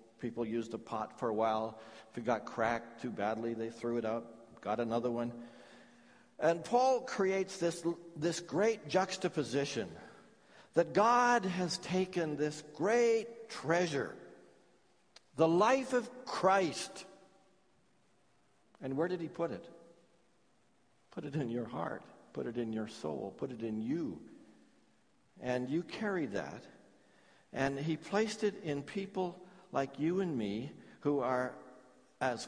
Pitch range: 120-190 Hz